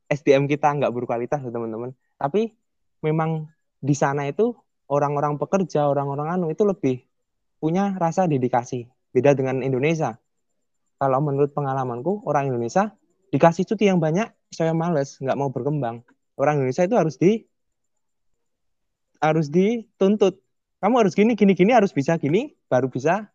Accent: native